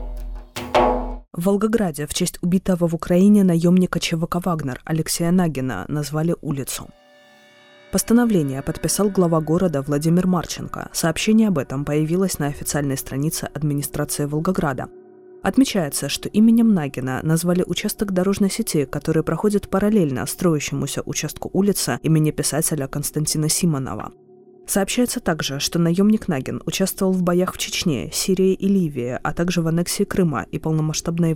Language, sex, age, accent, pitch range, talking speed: Russian, female, 20-39, native, 145-180 Hz, 130 wpm